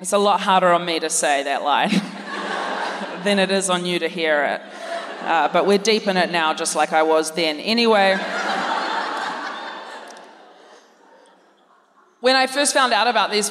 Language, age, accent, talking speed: English, 20-39, Australian, 170 wpm